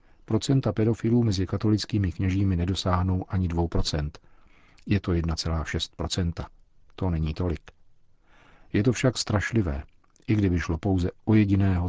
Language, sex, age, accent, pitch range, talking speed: Czech, male, 50-69, native, 85-100 Hz, 125 wpm